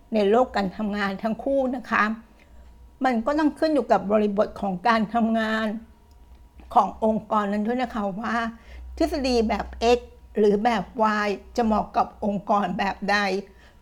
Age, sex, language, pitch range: 60-79, female, Thai, 205-240 Hz